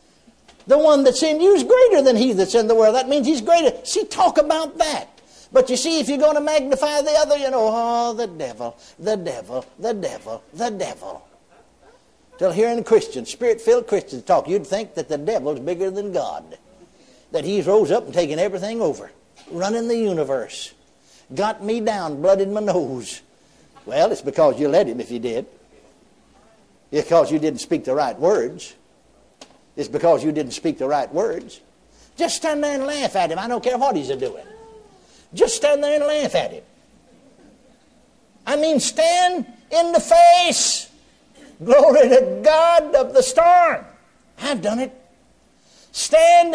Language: English